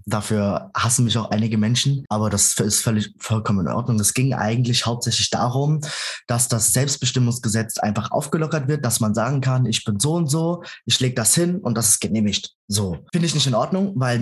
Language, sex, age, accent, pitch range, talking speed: German, male, 20-39, German, 110-135 Hz, 205 wpm